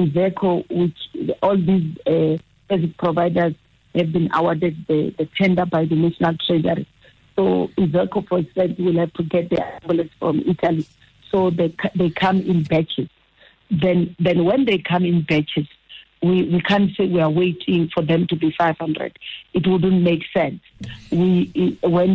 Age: 50-69